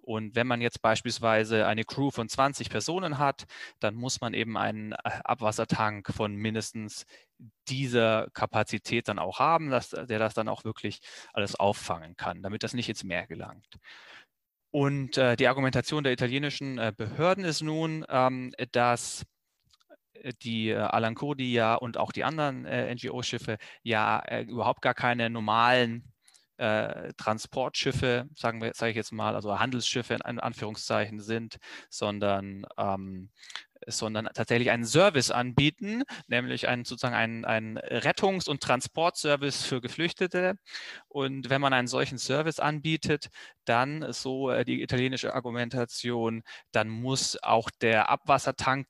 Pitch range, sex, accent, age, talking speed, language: 110-135 Hz, male, German, 30-49, 140 wpm, German